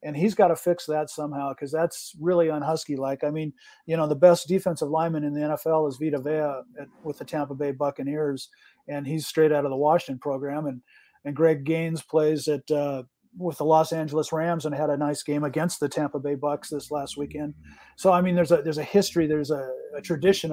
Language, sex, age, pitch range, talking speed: English, male, 50-69, 145-170 Hz, 225 wpm